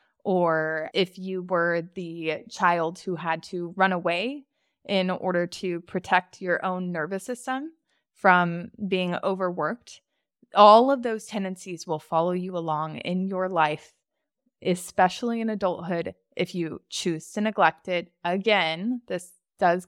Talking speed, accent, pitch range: 135 wpm, American, 175-220 Hz